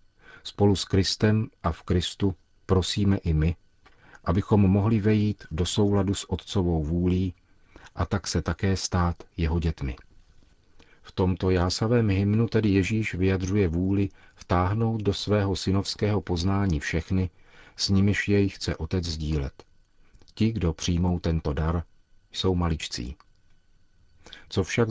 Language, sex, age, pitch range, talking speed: Czech, male, 40-59, 85-100 Hz, 130 wpm